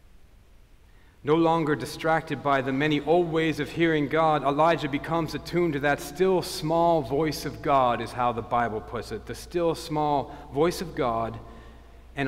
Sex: male